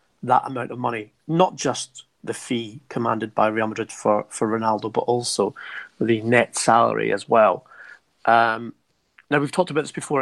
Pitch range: 115-140 Hz